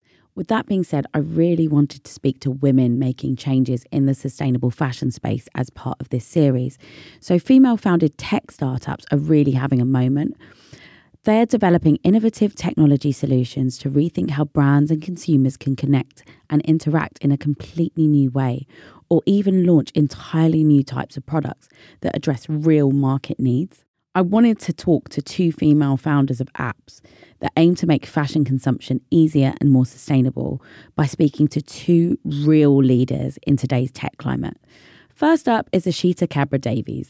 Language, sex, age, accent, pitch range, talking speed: English, female, 30-49, British, 130-160 Hz, 165 wpm